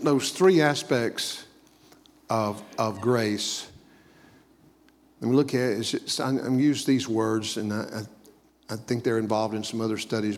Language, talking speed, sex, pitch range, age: English, 175 wpm, male, 115-155 Hz, 50-69